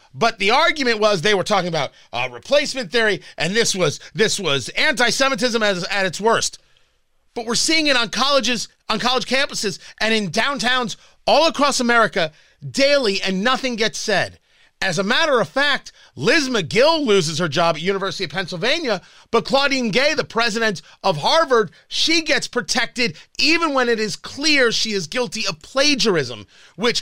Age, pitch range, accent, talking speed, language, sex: 30-49, 185-260 Hz, American, 165 wpm, English, male